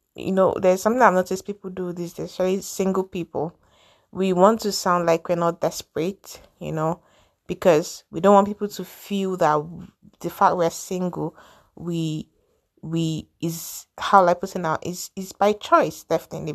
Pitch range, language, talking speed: 165-200 Hz, English, 165 wpm